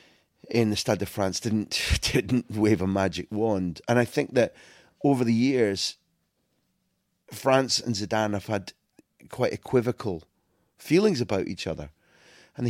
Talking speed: 140 wpm